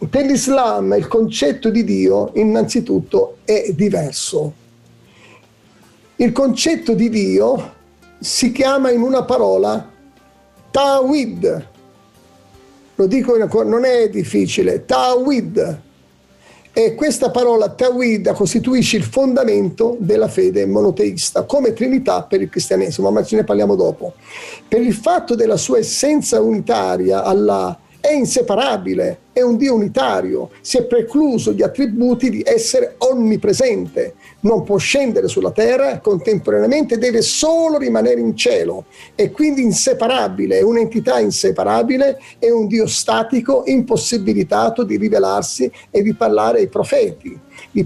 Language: Italian